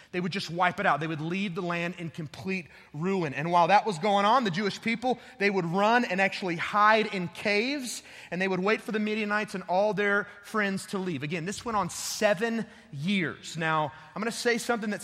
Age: 30-49